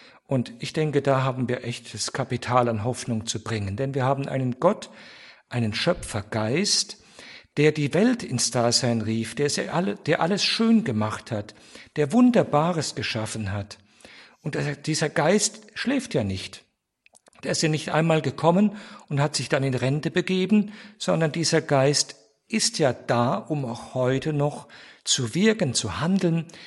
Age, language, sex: 50-69, German, male